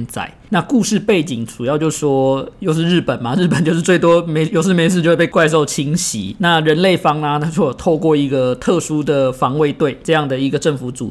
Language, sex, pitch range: Chinese, male, 135-170 Hz